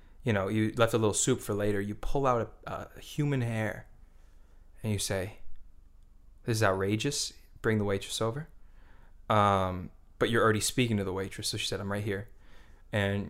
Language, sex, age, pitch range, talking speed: English, male, 20-39, 100-115 Hz, 185 wpm